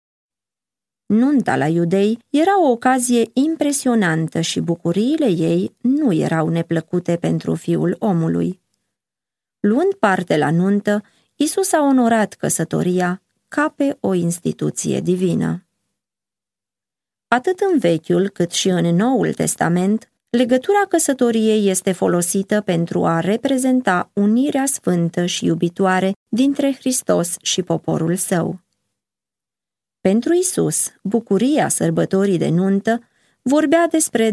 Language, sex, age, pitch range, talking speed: Romanian, female, 20-39, 170-245 Hz, 105 wpm